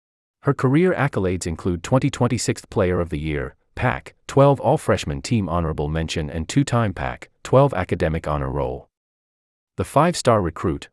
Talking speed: 125 wpm